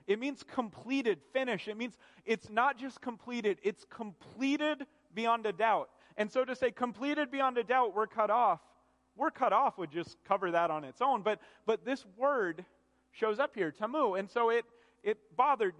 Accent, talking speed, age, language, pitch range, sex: American, 185 wpm, 30-49, English, 155-235 Hz, male